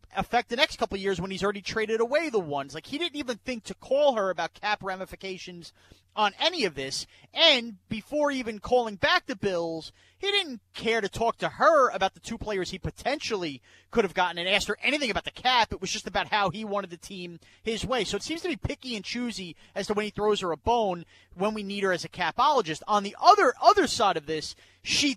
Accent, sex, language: American, male, English